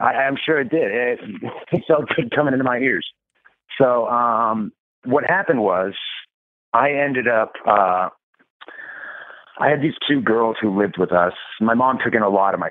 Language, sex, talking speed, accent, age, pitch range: English, male, 190 wpm, American, 30-49, 90-120 Hz